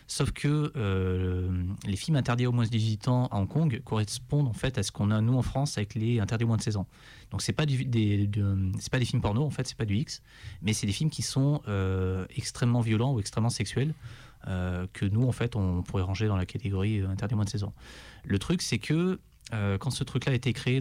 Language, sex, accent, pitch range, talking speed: French, male, French, 100-125 Hz, 250 wpm